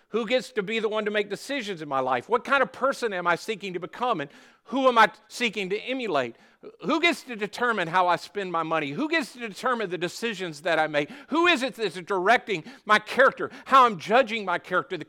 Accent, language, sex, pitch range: American, English, male, 165-245 Hz